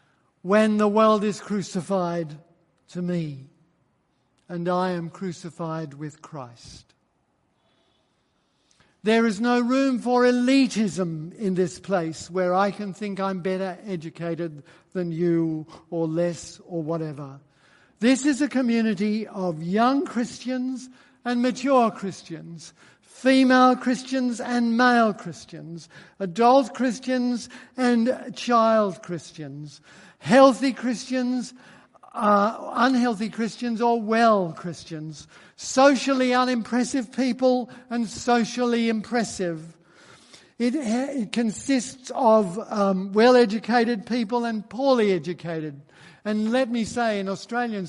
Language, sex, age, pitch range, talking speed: English, male, 60-79, 175-240 Hz, 110 wpm